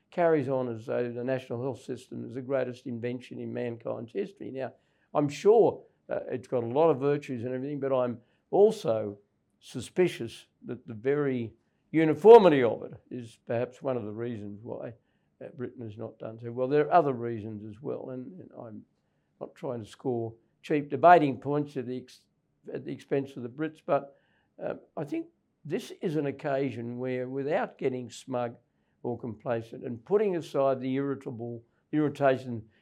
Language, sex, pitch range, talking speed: English, male, 115-140 Hz, 175 wpm